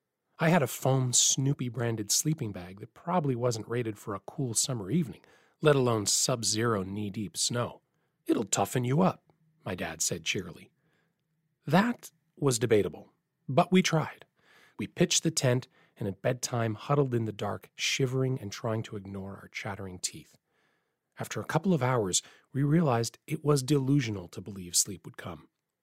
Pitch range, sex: 105-145 Hz, male